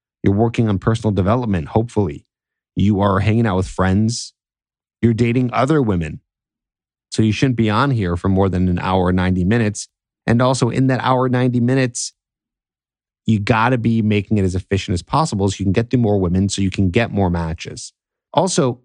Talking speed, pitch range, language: 190 wpm, 95-125 Hz, English